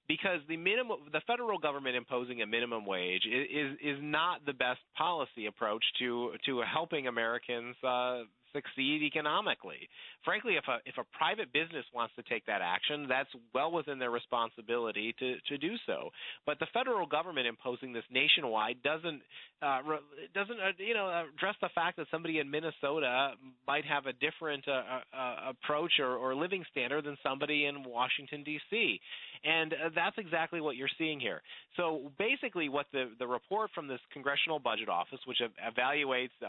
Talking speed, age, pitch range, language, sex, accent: 170 wpm, 30-49, 130-165 Hz, English, male, American